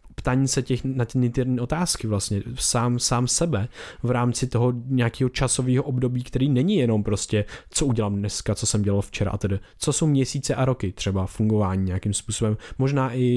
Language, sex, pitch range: Czech, male, 115-135 Hz